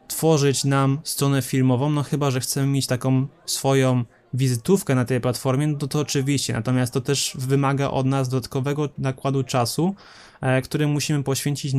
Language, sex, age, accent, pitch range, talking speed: Polish, male, 20-39, native, 130-145 Hz, 160 wpm